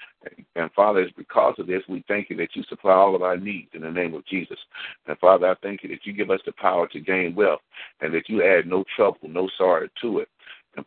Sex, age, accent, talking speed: male, 50-69, American, 255 wpm